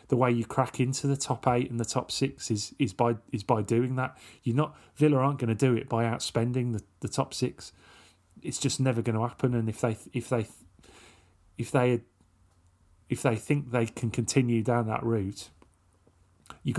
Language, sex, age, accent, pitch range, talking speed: English, male, 30-49, British, 105-125 Hz, 200 wpm